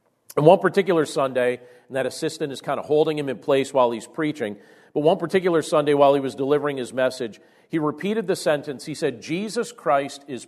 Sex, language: male, English